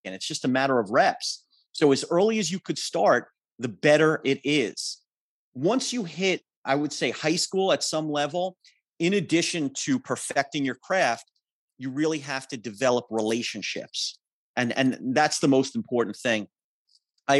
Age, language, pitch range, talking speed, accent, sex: 40-59, English, 125-160 Hz, 170 wpm, American, male